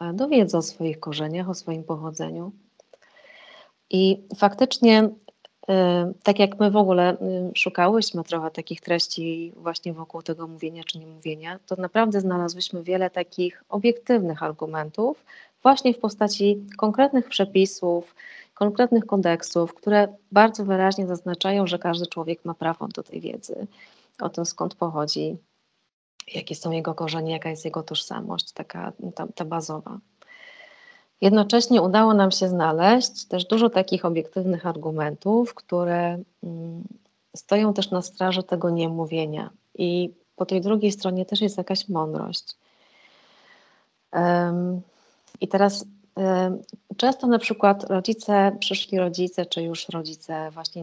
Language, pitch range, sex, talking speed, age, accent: Polish, 170-205 Hz, female, 125 wpm, 30-49, native